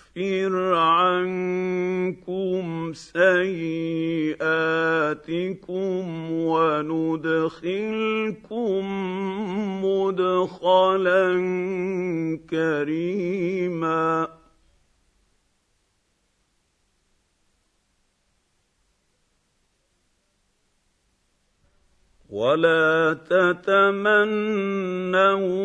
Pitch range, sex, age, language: 160-195 Hz, male, 50-69, English